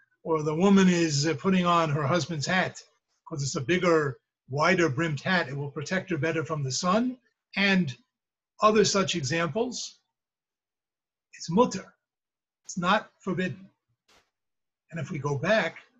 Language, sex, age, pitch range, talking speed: English, male, 50-69, 145-190 Hz, 145 wpm